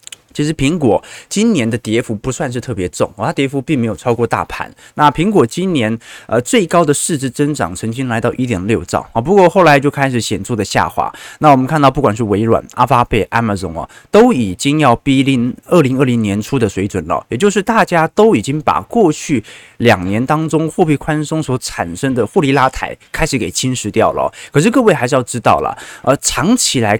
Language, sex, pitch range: Chinese, male, 115-160 Hz